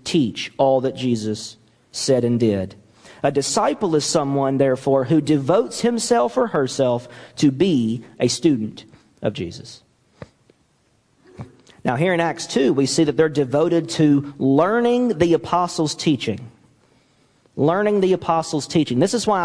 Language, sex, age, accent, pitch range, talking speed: English, male, 40-59, American, 130-175 Hz, 140 wpm